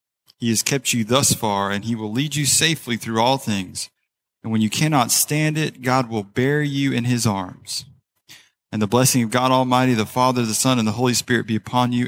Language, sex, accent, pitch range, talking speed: English, male, American, 105-125 Hz, 225 wpm